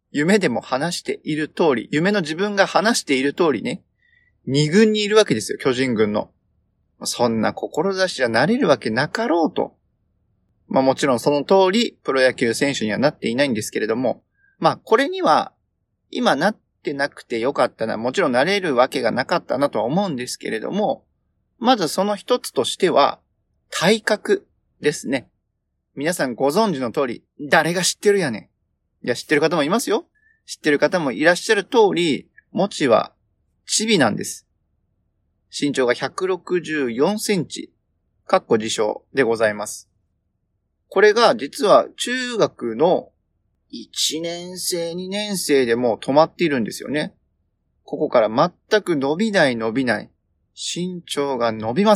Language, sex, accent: Japanese, male, native